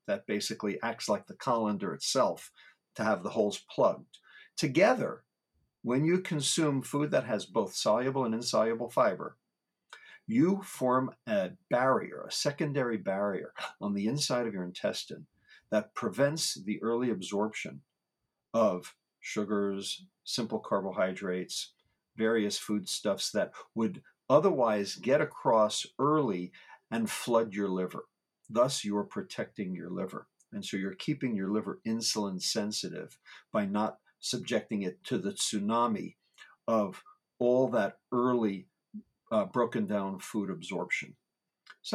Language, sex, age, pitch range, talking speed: English, male, 50-69, 105-145 Hz, 125 wpm